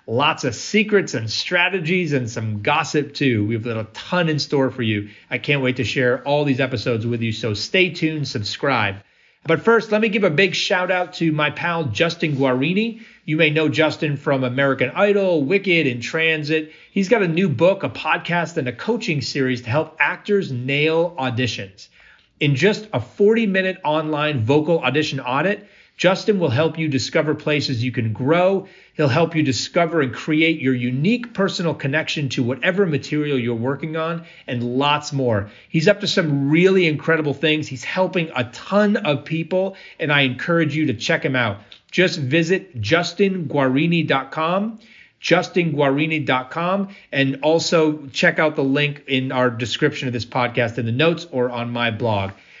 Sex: male